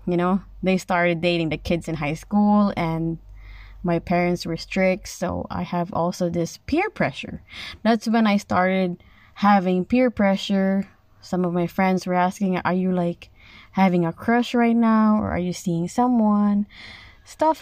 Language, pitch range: Filipino, 155-200 Hz